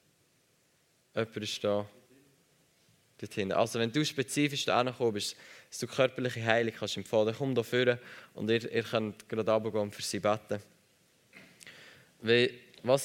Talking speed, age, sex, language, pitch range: 145 wpm, 20-39, male, German, 105-130 Hz